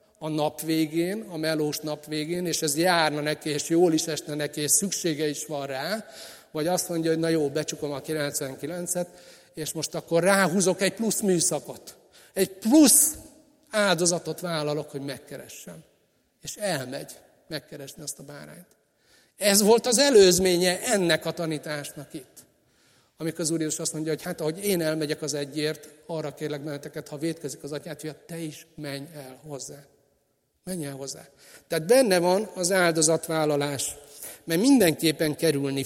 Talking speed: 155 wpm